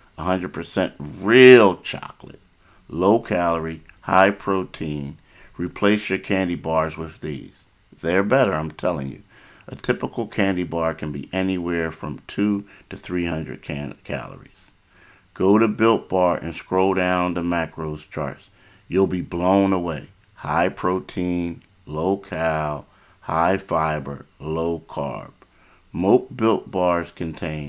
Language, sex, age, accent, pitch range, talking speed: English, male, 50-69, American, 80-100 Hz, 115 wpm